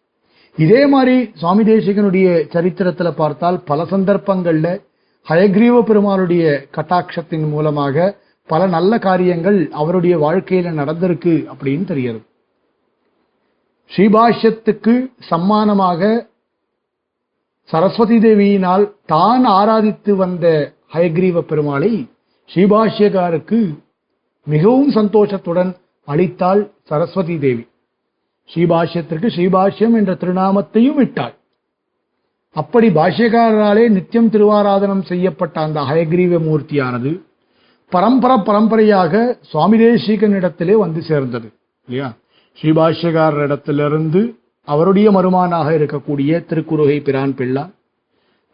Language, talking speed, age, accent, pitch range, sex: Tamil, 75 wpm, 50-69, native, 155-210 Hz, male